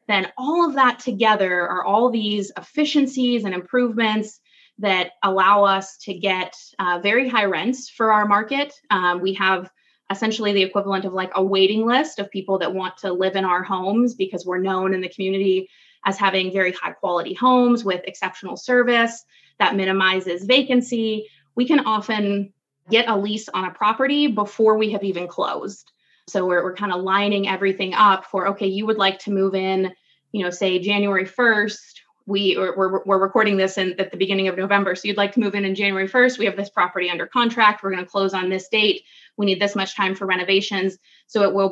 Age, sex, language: 20-39, female, English